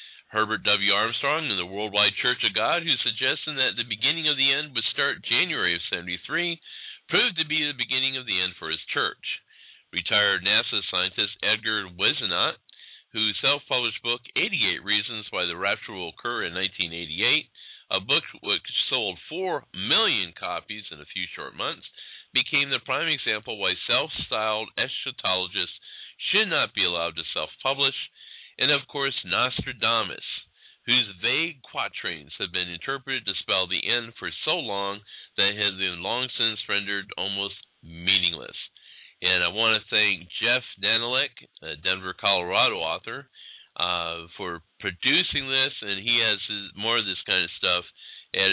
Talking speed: 160 wpm